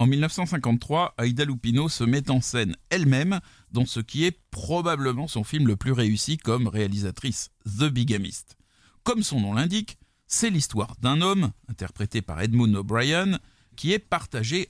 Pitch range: 110-155 Hz